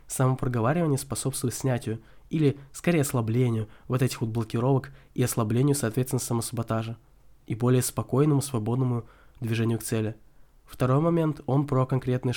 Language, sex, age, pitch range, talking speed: Russian, male, 20-39, 115-135 Hz, 125 wpm